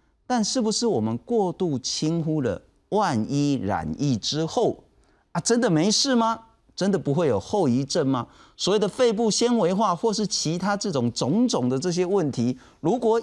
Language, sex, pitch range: Chinese, male, 140-220 Hz